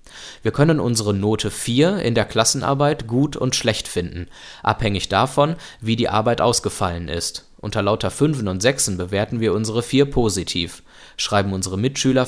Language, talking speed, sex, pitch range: German, 155 wpm, male, 100-135 Hz